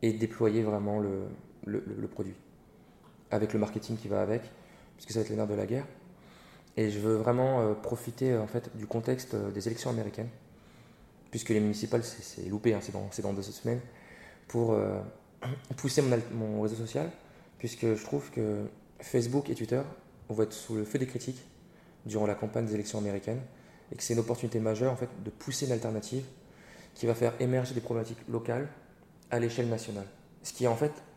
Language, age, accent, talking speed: French, 20-39, French, 195 wpm